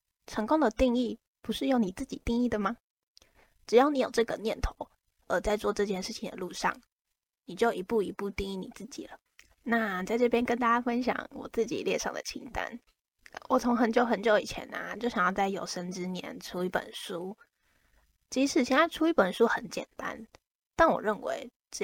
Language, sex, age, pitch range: Chinese, female, 20-39, 190-245 Hz